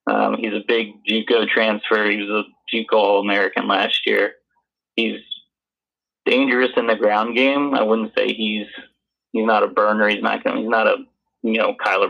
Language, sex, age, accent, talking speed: English, male, 30-49, American, 180 wpm